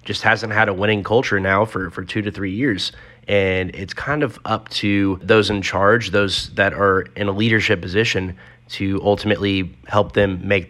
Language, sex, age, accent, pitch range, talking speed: English, male, 30-49, American, 95-110 Hz, 190 wpm